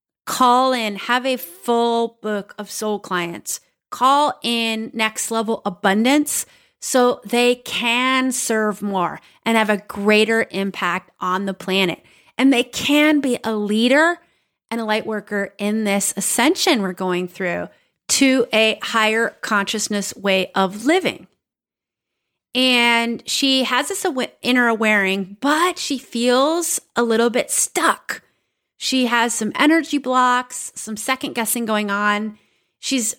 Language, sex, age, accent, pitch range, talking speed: English, female, 30-49, American, 215-260 Hz, 130 wpm